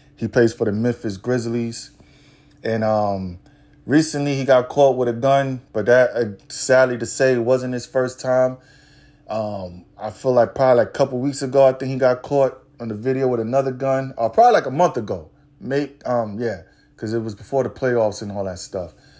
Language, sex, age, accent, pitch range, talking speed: English, male, 20-39, American, 115-145 Hz, 210 wpm